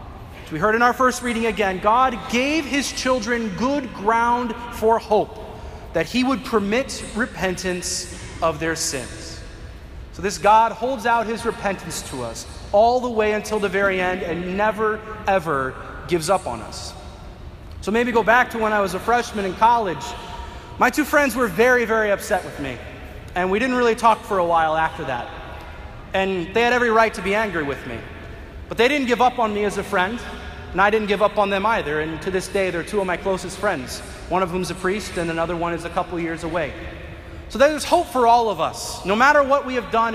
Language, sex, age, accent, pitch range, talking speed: English, male, 30-49, American, 180-245 Hz, 210 wpm